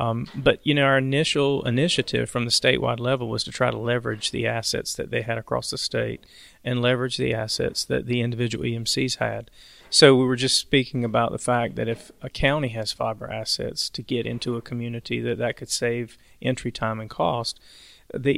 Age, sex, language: 40-59, male, English